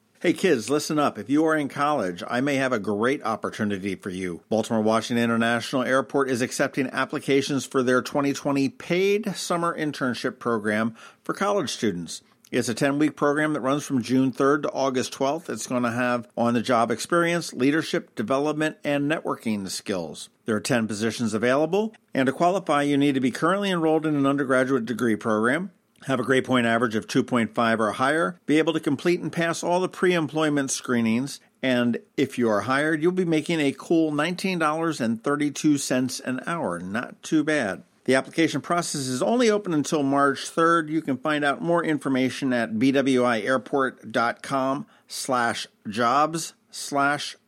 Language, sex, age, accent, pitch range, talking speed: English, male, 50-69, American, 125-155 Hz, 170 wpm